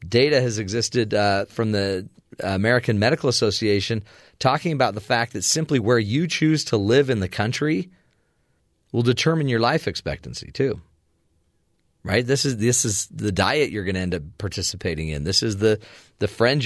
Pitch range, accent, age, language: 90-125 Hz, American, 40-59, English